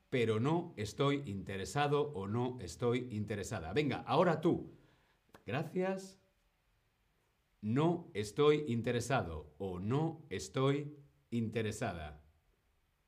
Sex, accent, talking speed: male, Spanish, 85 wpm